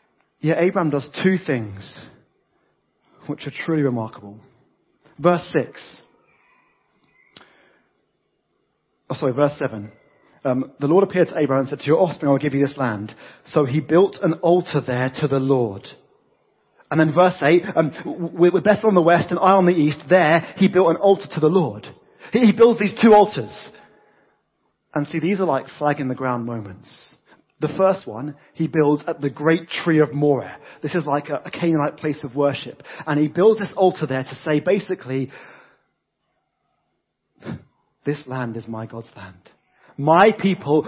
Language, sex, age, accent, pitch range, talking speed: English, male, 30-49, British, 140-180 Hz, 170 wpm